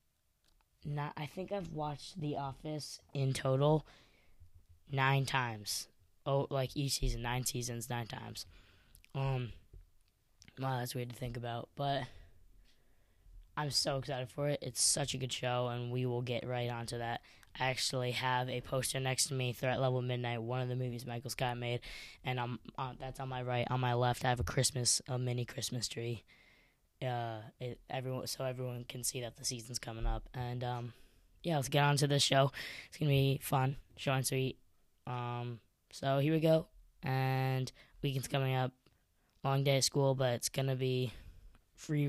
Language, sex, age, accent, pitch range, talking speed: English, female, 10-29, American, 115-135 Hz, 180 wpm